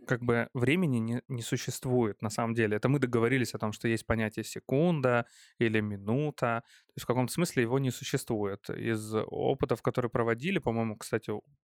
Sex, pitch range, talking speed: male, 115-135 Hz, 180 wpm